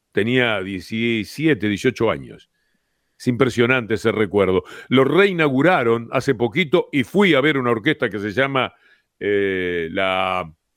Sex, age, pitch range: male, 50-69, 110-150 Hz